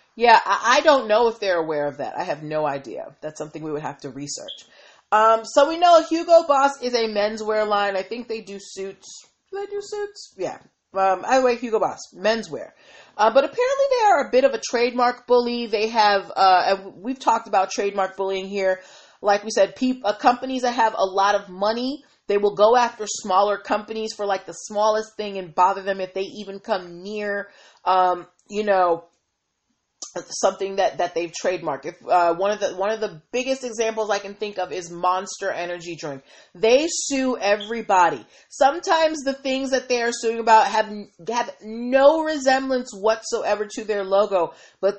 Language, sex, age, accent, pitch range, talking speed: English, female, 30-49, American, 195-245 Hz, 190 wpm